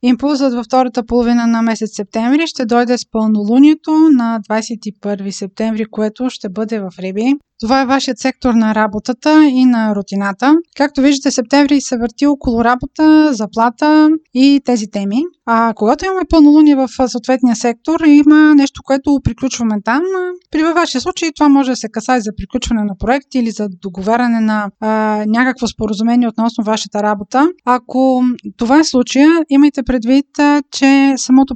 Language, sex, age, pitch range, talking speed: Bulgarian, female, 20-39, 220-275 Hz, 155 wpm